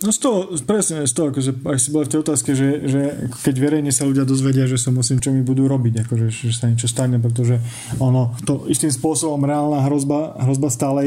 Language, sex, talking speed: Slovak, male, 210 wpm